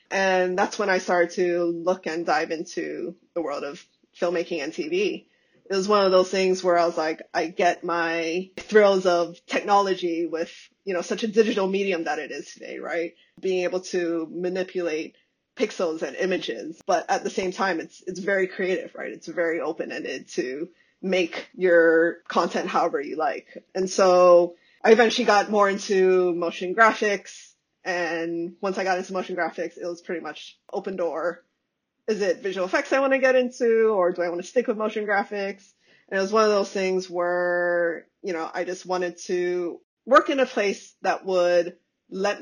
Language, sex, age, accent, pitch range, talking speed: English, female, 20-39, American, 170-200 Hz, 185 wpm